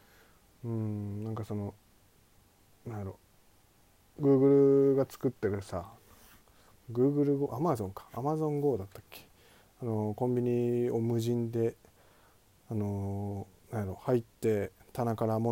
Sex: male